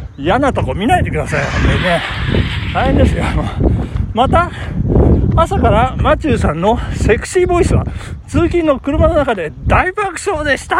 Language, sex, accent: Japanese, male, native